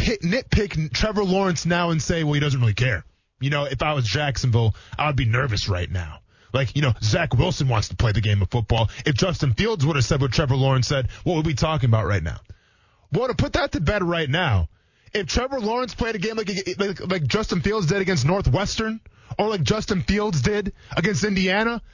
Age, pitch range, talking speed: 20-39, 130-210 Hz, 225 wpm